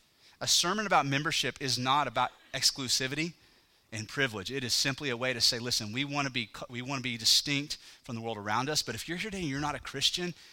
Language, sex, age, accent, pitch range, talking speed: English, male, 30-49, American, 125-165 Hz, 240 wpm